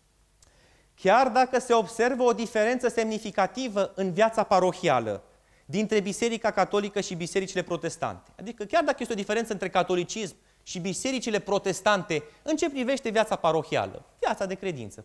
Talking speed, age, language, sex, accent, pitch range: 140 wpm, 30-49, Romanian, male, native, 175-230 Hz